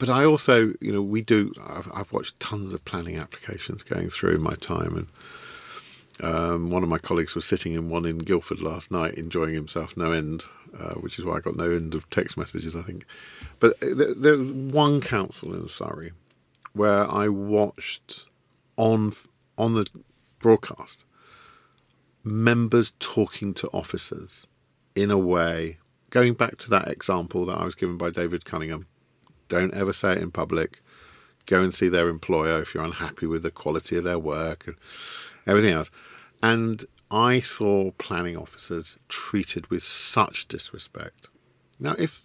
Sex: male